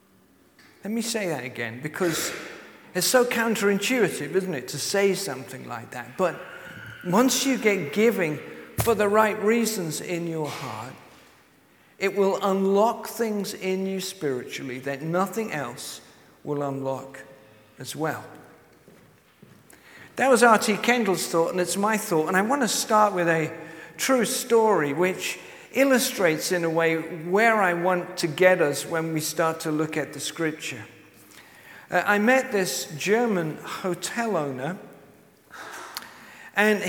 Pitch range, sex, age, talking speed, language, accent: 160-215 Hz, male, 50-69, 140 wpm, English, British